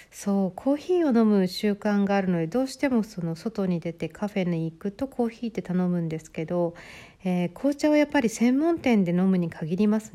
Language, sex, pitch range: Japanese, female, 175-230 Hz